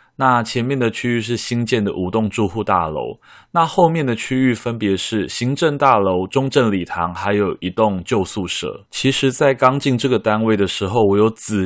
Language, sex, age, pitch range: Chinese, male, 20-39, 95-120 Hz